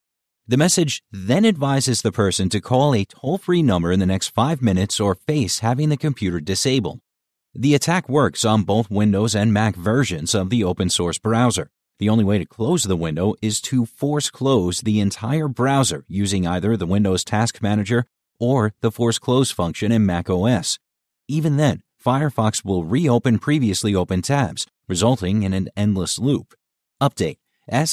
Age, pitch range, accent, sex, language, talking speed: 30-49, 100-130 Hz, American, male, English, 160 wpm